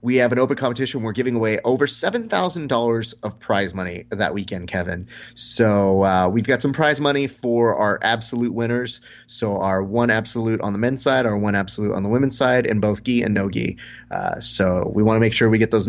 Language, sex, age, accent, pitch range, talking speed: English, male, 30-49, American, 110-130 Hz, 220 wpm